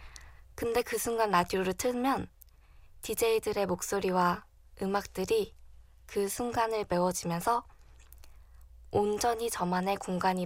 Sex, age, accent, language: female, 20-39, native, Korean